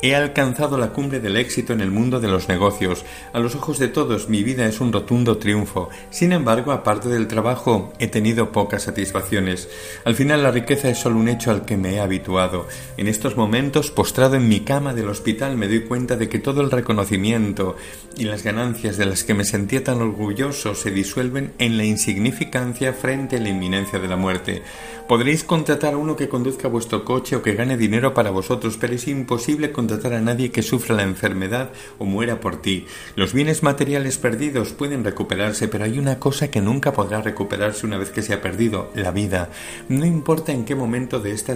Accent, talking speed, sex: Spanish, 205 wpm, male